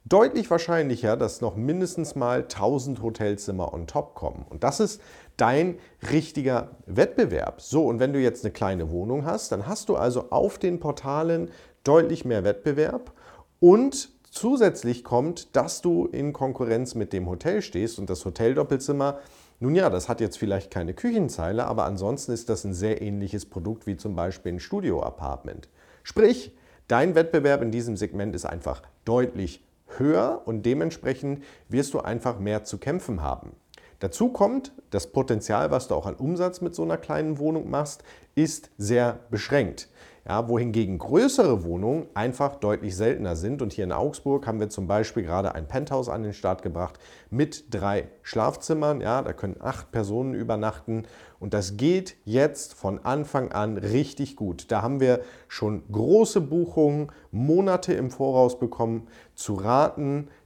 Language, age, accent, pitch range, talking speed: German, 50-69, German, 105-145 Hz, 160 wpm